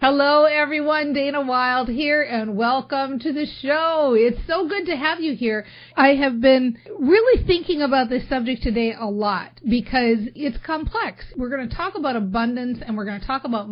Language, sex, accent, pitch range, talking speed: English, female, American, 205-275 Hz, 180 wpm